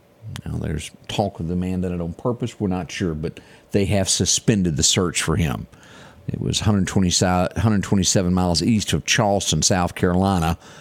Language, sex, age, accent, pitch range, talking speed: English, male, 50-69, American, 80-100 Hz, 165 wpm